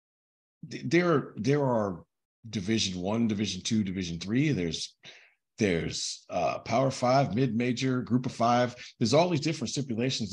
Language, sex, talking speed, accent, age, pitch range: English, male, 140 wpm, American, 40-59, 115-140 Hz